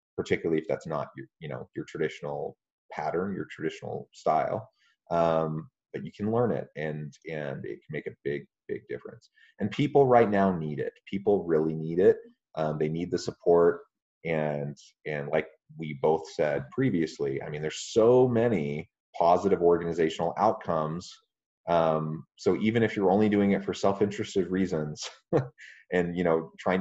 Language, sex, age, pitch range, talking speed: English, male, 30-49, 80-110 Hz, 165 wpm